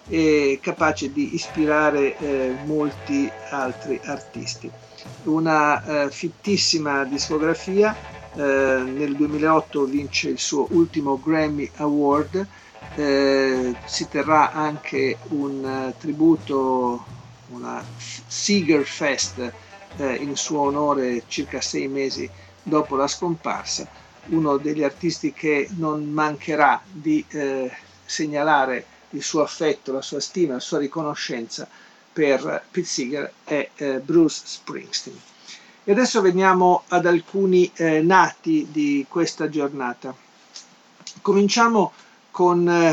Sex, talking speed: male, 110 wpm